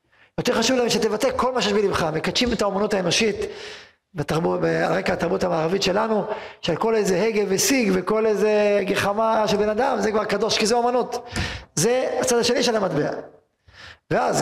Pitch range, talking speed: 195-240 Hz, 160 wpm